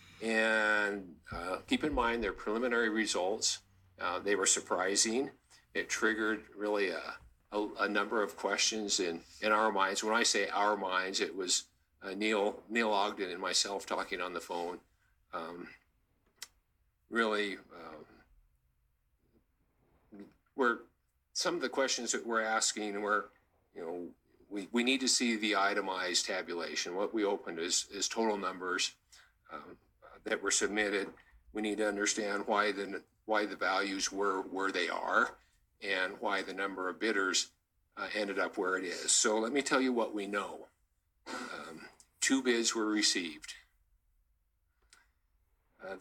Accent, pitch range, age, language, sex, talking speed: American, 95-115 Hz, 50-69, English, male, 145 wpm